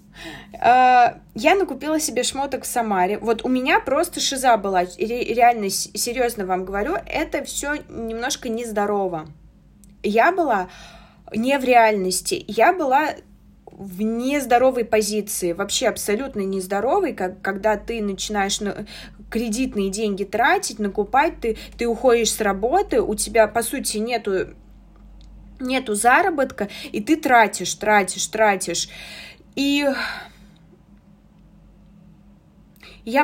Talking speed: 105 wpm